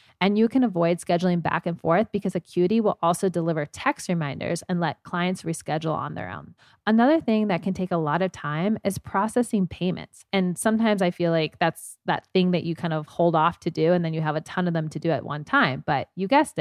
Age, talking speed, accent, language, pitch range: 30-49, 240 wpm, American, English, 165-210 Hz